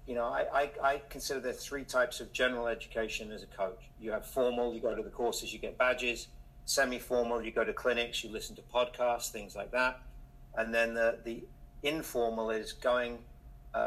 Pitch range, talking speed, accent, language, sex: 115-135 Hz, 205 wpm, British, English, male